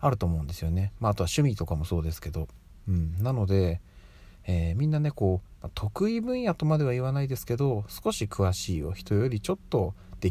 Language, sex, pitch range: Japanese, male, 85-110 Hz